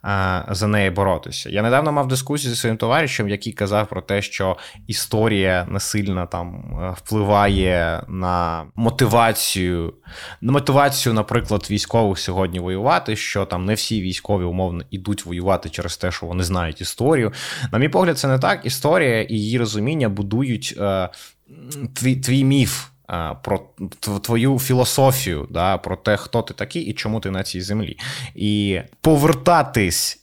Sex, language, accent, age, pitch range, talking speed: male, Ukrainian, native, 20-39, 95-120 Hz, 145 wpm